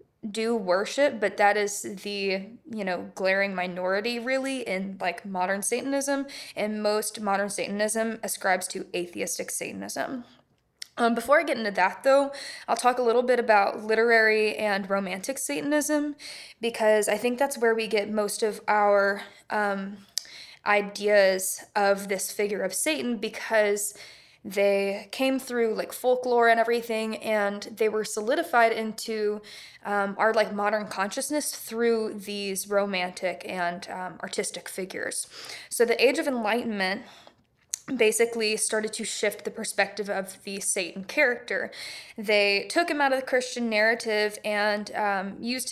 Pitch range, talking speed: 200-235 Hz, 140 wpm